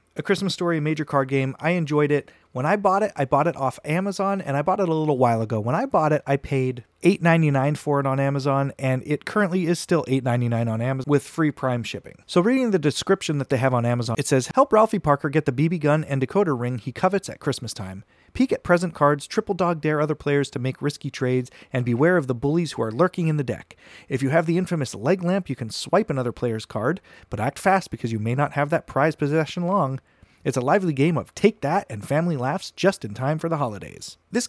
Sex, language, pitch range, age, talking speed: male, English, 130-170 Hz, 30-49, 245 wpm